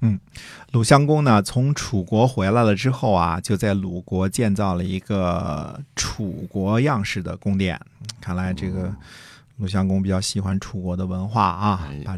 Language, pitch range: Chinese, 95-115 Hz